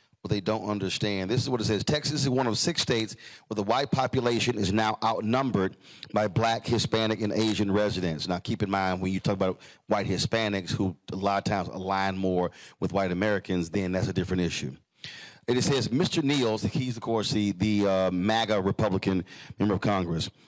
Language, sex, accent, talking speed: English, male, American, 195 wpm